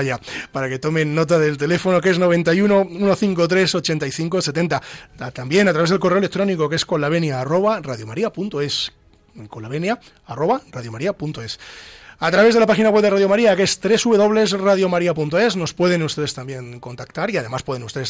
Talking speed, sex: 150 wpm, male